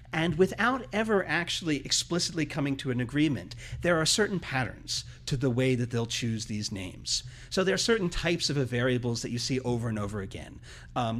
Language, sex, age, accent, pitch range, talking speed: English, male, 40-59, American, 120-150 Hz, 195 wpm